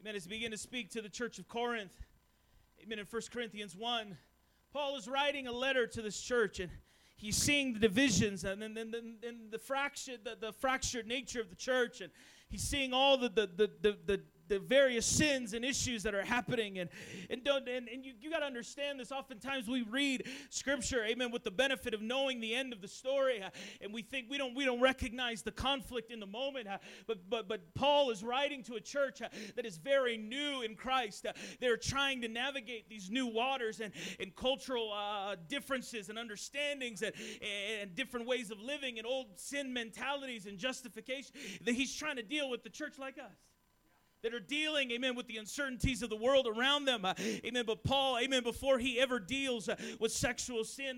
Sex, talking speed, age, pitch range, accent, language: male, 210 wpm, 30-49, 220-265 Hz, American, English